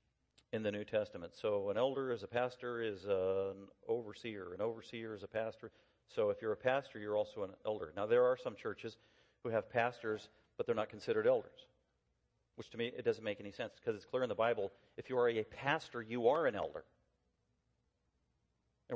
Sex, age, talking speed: male, 40-59, 205 wpm